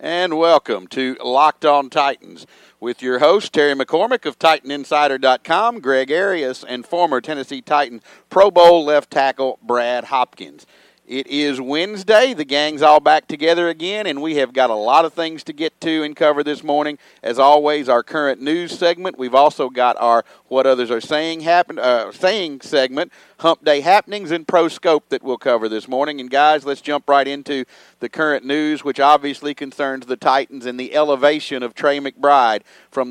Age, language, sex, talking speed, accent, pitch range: 50-69, English, male, 180 wpm, American, 130-155 Hz